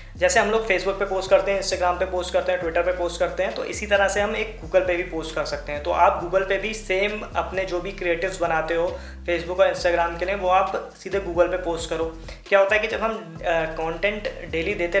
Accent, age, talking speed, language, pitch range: native, 20-39, 260 wpm, Hindi, 165-200 Hz